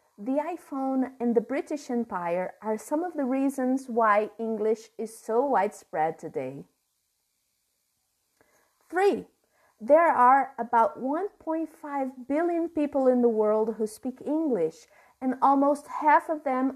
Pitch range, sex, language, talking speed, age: 215-275 Hz, female, English, 125 wpm, 30-49